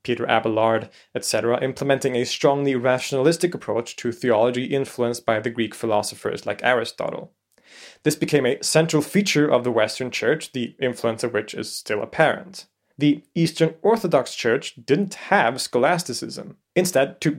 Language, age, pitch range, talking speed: English, 20-39, 120-145 Hz, 145 wpm